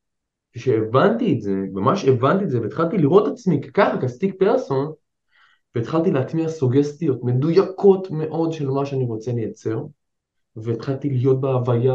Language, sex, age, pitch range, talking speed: Hebrew, male, 20-39, 125-190 Hz, 130 wpm